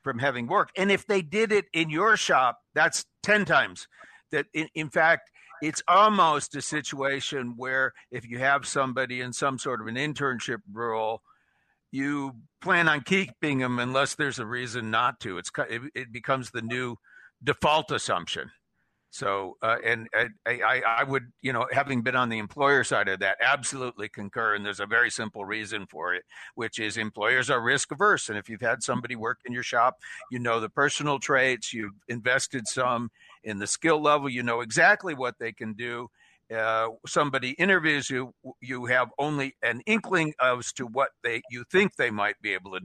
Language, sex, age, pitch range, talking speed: English, male, 50-69, 120-150 Hz, 185 wpm